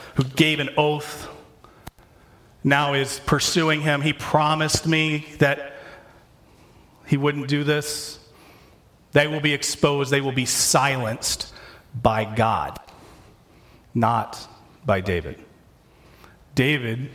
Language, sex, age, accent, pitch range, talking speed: English, male, 40-59, American, 130-155 Hz, 105 wpm